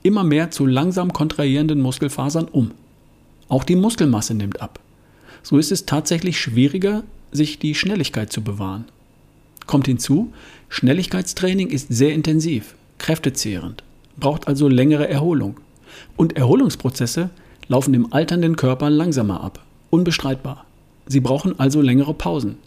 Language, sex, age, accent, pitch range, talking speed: German, male, 50-69, German, 125-155 Hz, 125 wpm